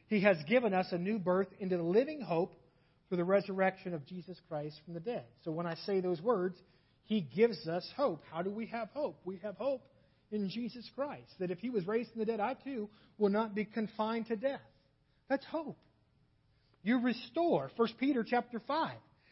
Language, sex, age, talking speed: English, male, 40-59, 200 wpm